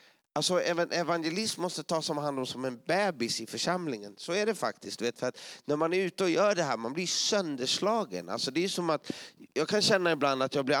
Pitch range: 135-170 Hz